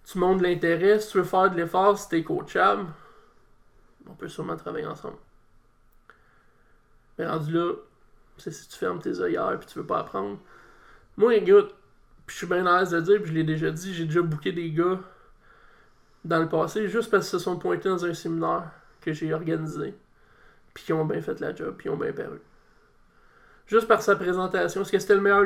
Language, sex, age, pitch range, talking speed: French, male, 20-39, 170-200 Hz, 205 wpm